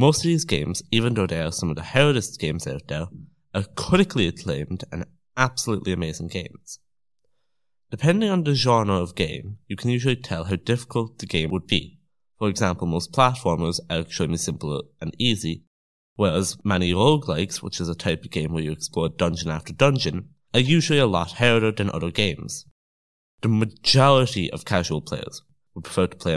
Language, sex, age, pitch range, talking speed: English, male, 20-39, 85-125 Hz, 180 wpm